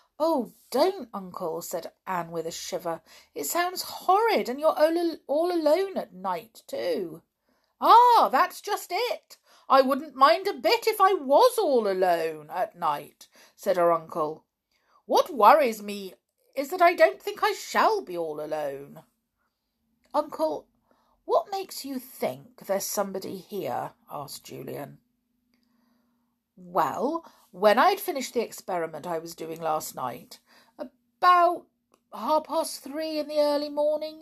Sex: female